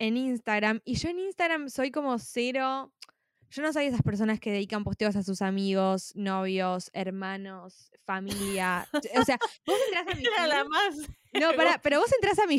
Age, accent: 10-29, Argentinian